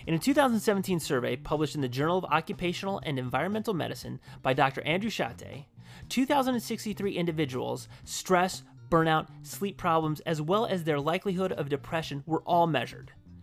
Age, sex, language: 30-49, male, English